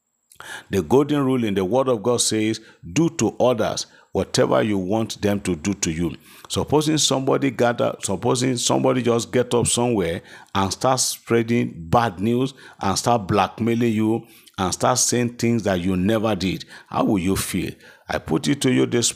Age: 50-69